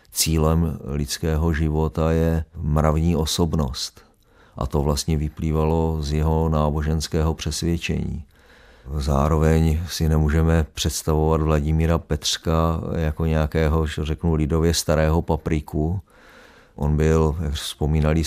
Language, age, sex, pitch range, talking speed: Czech, 50-69, male, 75-80 Hz, 100 wpm